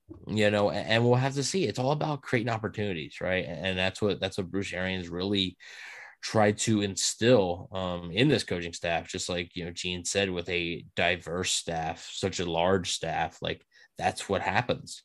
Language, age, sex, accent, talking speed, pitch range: English, 20-39, male, American, 185 wpm, 95-120 Hz